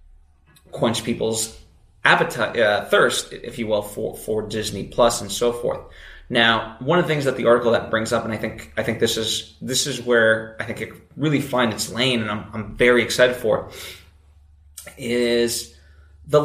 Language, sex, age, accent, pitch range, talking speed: English, male, 20-39, American, 110-140 Hz, 190 wpm